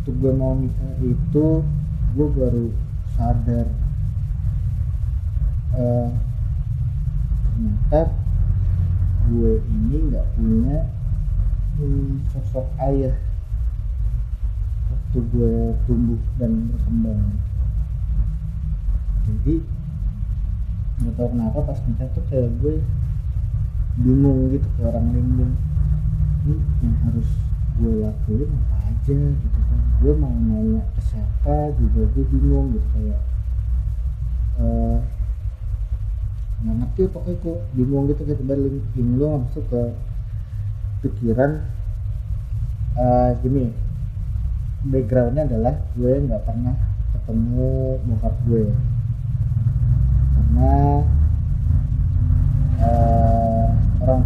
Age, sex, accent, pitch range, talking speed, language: 30-49, male, native, 95-125 Hz, 85 wpm, Indonesian